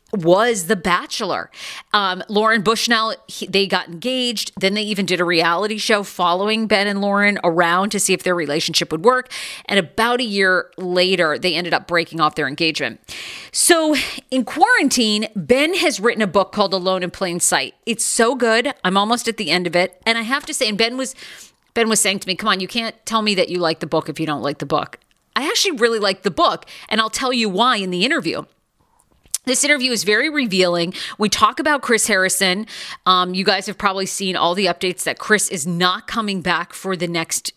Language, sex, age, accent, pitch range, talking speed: English, female, 40-59, American, 175-230 Hz, 215 wpm